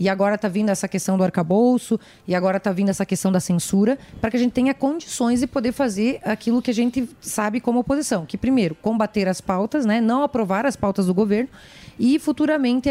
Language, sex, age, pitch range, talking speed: Portuguese, female, 30-49, 200-270 Hz, 215 wpm